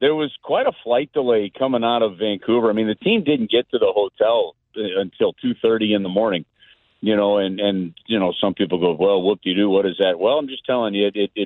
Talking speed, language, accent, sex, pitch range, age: 250 wpm, English, American, male, 110-170 Hz, 50-69